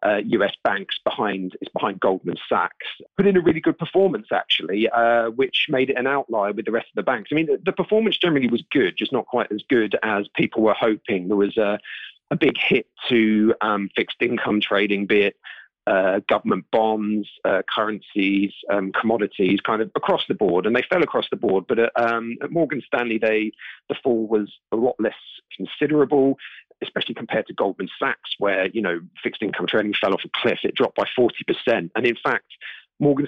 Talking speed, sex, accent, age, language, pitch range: 200 wpm, male, British, 40-59, English, 105-135 Hz